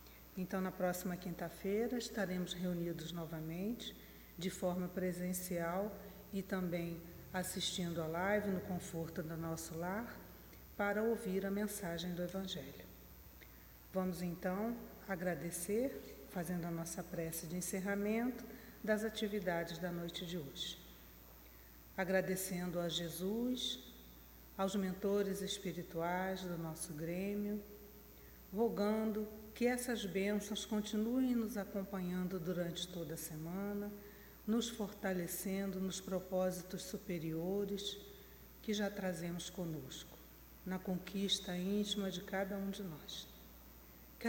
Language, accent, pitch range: Portuguese, Brazilian, 170-200 Hz